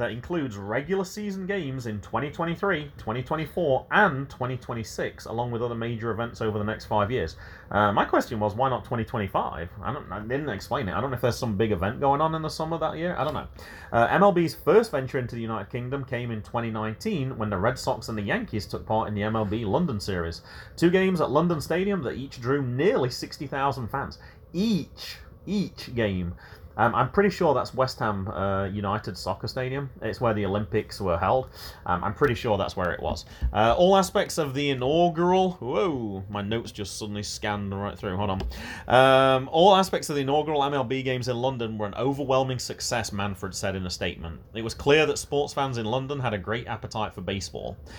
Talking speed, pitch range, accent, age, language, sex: 205 wpm, 105-140 Hz, British, 30-49, English, male